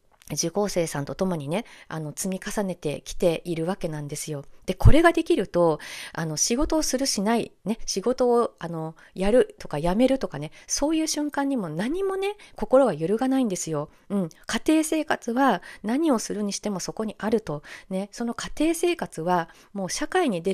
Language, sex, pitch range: Japanese, female, 170-245 Hz